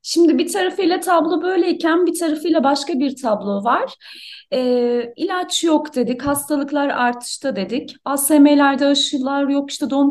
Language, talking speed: Turkish, 135 wpm